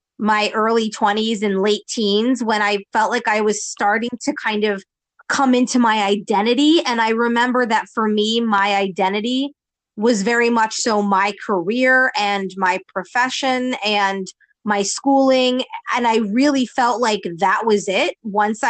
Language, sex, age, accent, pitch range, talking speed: English, female, 20-39, American, 210-260 Hz, 155 wpm